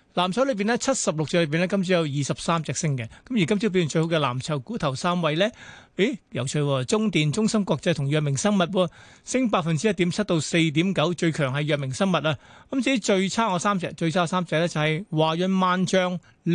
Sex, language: male, Chinese